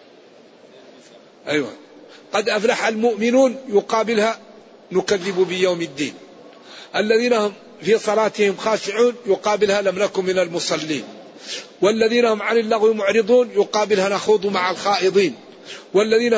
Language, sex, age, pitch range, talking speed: Arabic, male, 50-69, 190-225 Hz, 105 wpm